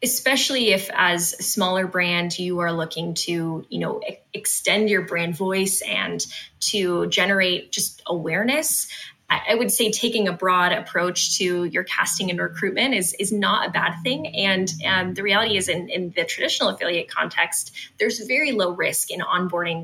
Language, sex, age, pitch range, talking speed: English, female, 20-39, 175-210 Hz, 170 wpm